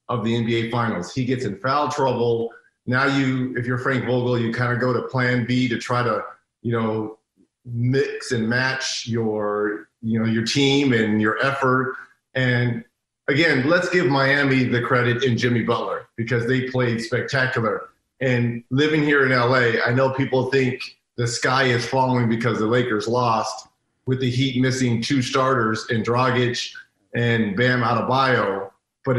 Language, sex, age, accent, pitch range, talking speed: English, male, 40-59, American, 120-135 Hz, 165 wpm